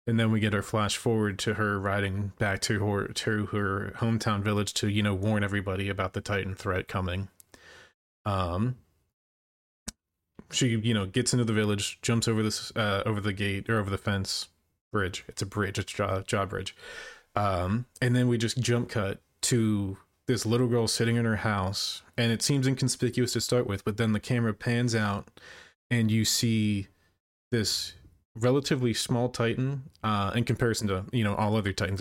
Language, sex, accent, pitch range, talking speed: English, male, American, 100-120 Hz, 185 wpm